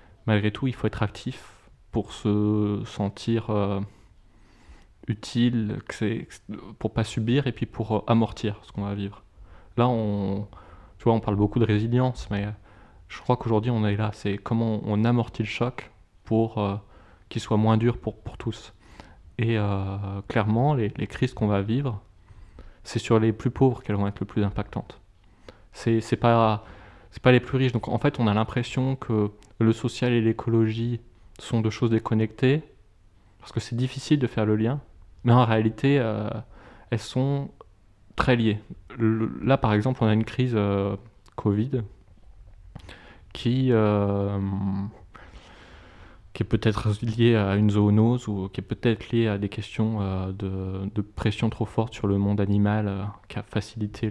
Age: 20-39